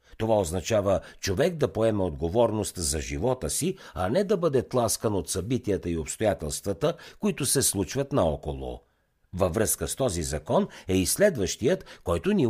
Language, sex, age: Bulgarian, male, 60-79